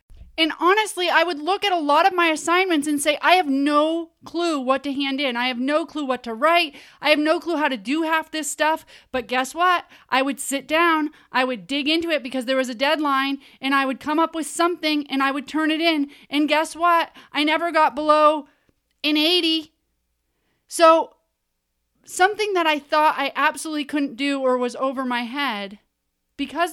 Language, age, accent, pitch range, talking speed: English, 30-49, American, 260-320 Hz, 205 wpm